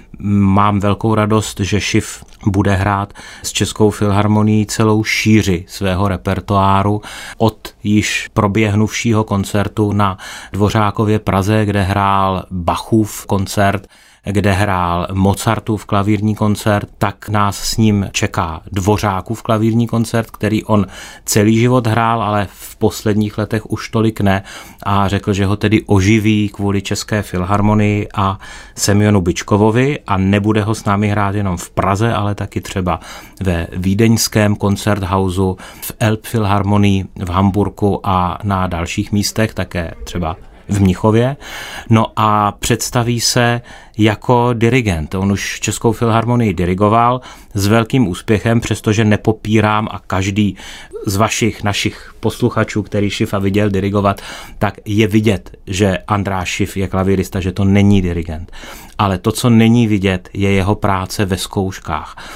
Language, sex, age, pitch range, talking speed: Czech, male, 30-49, 100-110 Hz, 135 wpm